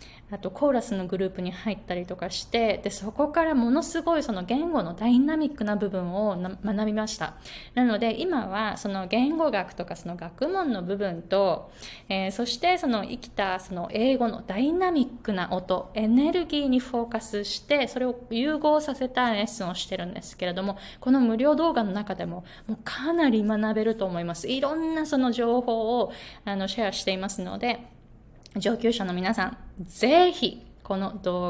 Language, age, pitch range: Japanese, 20-39, 185-245 Hz